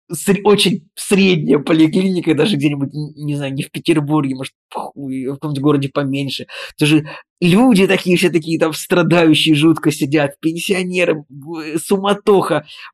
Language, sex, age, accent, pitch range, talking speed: Russian, male, 20-39, native, 130-160 Hz, 125 wpm